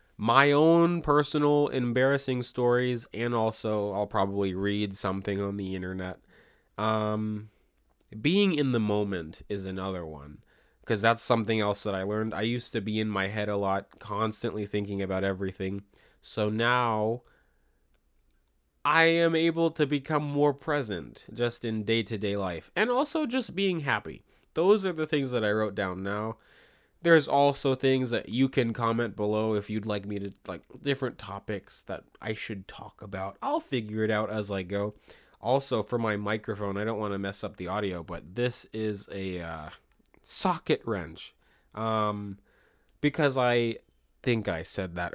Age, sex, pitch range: 20-39, male, 100-125 Hz